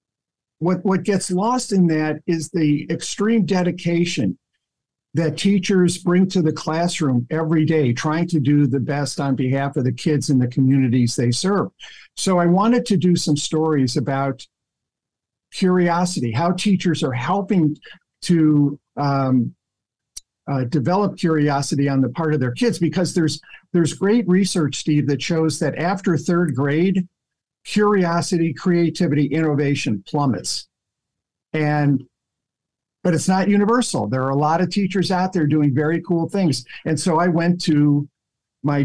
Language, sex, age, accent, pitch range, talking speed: English, male, 50-69, American, 140-175 Hz, 150 wpm